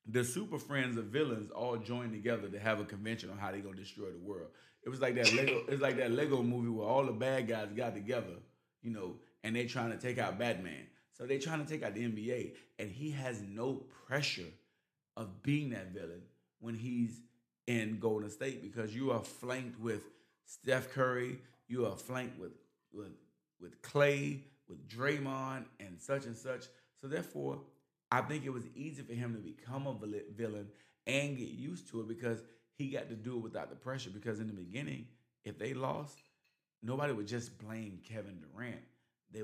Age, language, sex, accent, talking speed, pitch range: 30-49, English, male, American, 195 wpm, 110-130 Hz